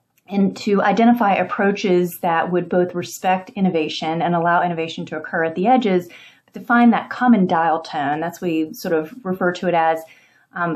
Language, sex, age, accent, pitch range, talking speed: English, female, 30-49, American, 165-190 Hz, 190 wpm